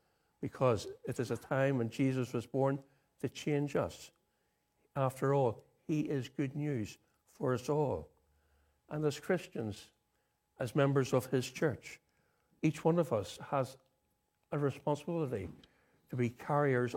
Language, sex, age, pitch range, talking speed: English, male, 60-79, 120-150 Hz, 140 wpm